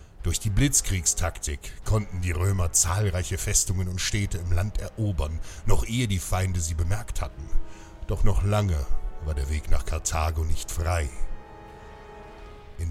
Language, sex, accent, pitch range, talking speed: German, male, German, 80-100 Hz, 145 wpm